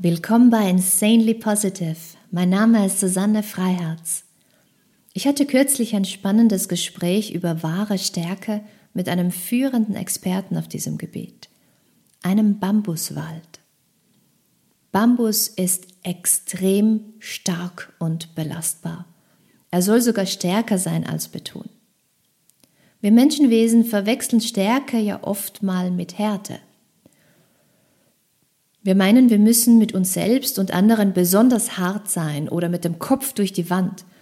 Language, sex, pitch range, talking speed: German, female, 175-220 Hz, 120 wpm